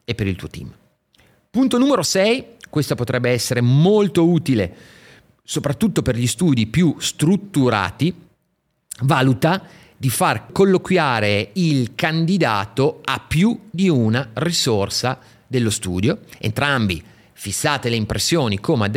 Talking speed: 115 wpm